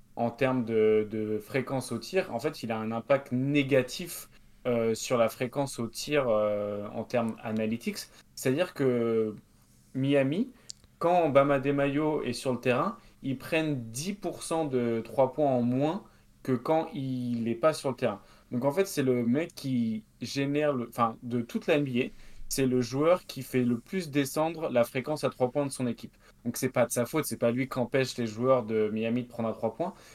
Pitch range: 120-145 Hz